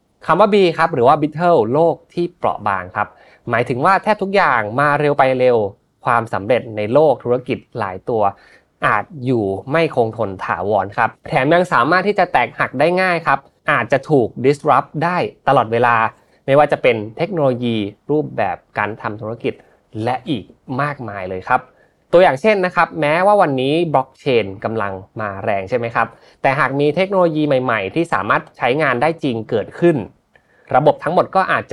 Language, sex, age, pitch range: Thai, male, 20-39, 110-155 Hz